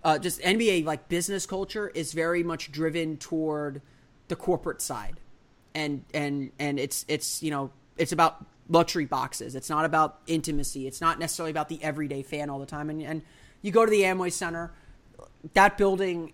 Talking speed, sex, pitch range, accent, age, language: 180 wpm, male, 140-170 Hz, American, 30-49, English